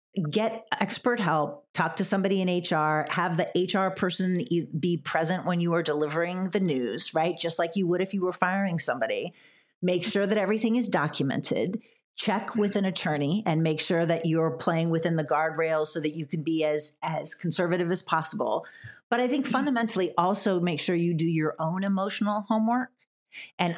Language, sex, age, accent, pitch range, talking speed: English, female, 40-59, American, 170-210 Hz, 185 wpm